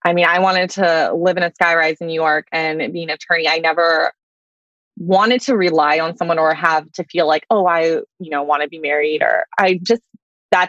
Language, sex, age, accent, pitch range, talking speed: English, female, 20-39, American, 165-195 Hz, 225 wpm